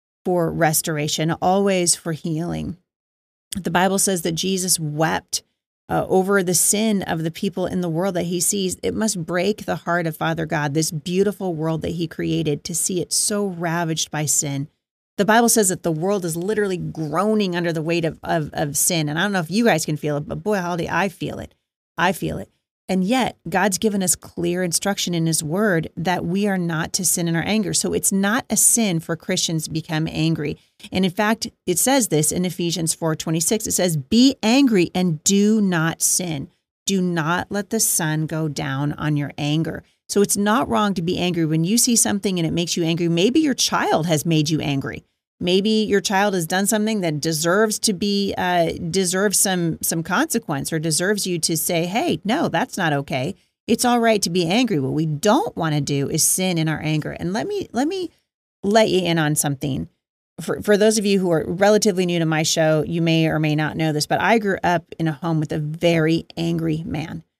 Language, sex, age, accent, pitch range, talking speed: English, female, 30-49, American, 160-205 Hz, 220 wpm